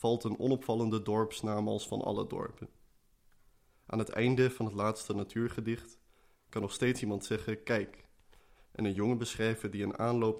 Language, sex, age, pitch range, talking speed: Dutch, male, 20-39, 105-115 Hz, 160 wpm